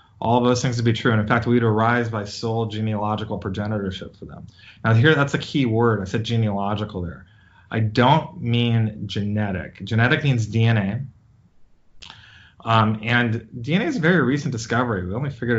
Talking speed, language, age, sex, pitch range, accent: 175 wpm, English, 30-49, male, 105-125 Hz, American